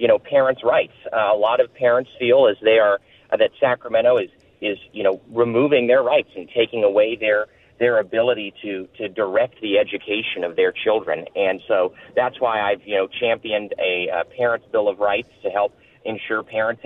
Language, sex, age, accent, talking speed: English, male, 40-59, American, 195 wpm